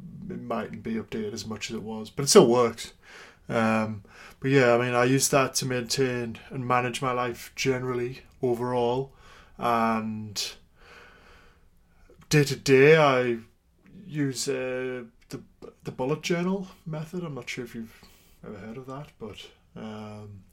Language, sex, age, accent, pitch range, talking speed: English, male, 20-39, British, 110-135 Hz, 145 wpm